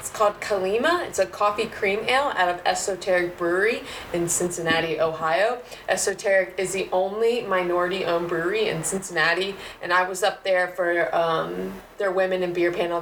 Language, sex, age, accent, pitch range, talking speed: English, female, 20-39, American, 170-205 Hz, 165 wpm